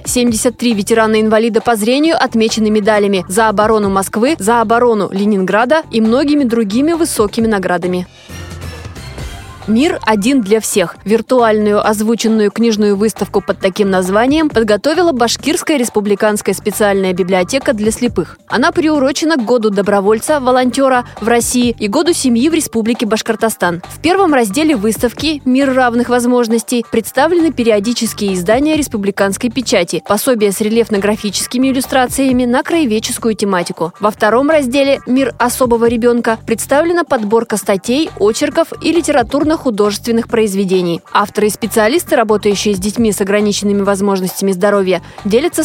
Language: Russian